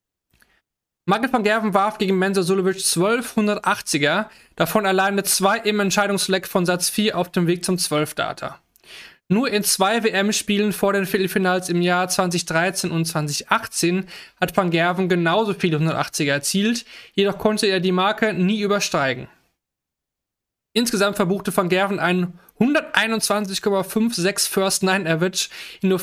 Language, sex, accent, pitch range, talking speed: German, male, German, 175-205 Hz, 130 wpm